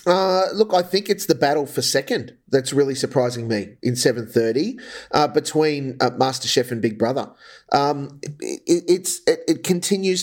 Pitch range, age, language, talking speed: 115-140 Hz, 30-49, English, 170 wpm